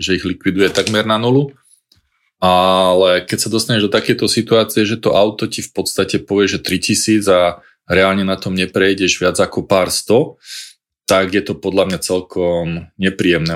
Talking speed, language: 170 wpm, Slovak